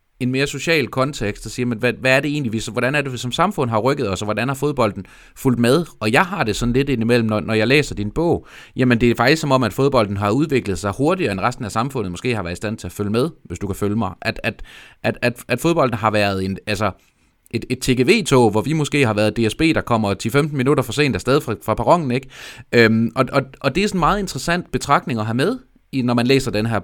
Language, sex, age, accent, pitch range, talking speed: Danish, male, 30-49, native, 105-135 Hz, 260 wpm